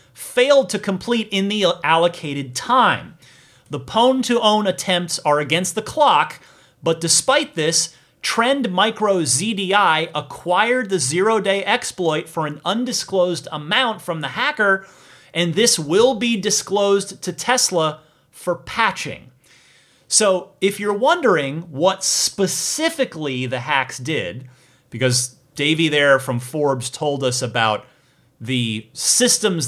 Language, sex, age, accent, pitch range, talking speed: English, male, 30-49, American, 135-200 Hz, 120 wpm